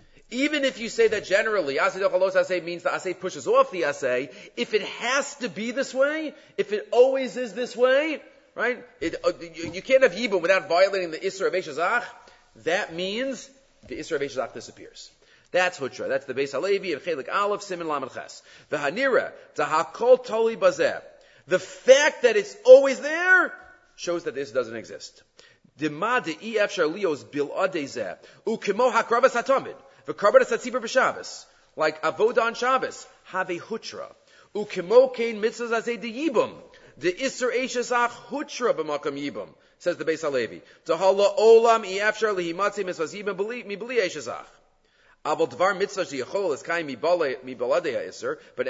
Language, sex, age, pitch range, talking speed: English, male, 40-59, 185-275 Hz, 105 wpm